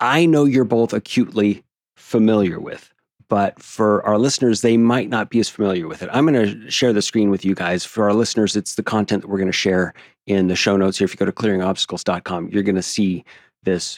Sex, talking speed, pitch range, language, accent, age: male, 230 wpm, 100-120 Hz, English, American, 30-49